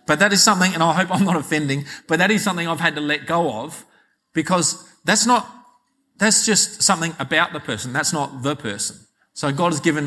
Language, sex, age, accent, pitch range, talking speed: English, male, 40-59, Australian, 145-205 Hz, 220 wpm